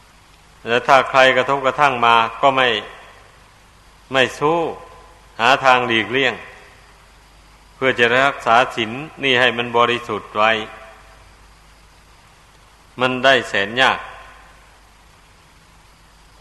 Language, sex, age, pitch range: Thai, male, 60-79, 115-135 Hz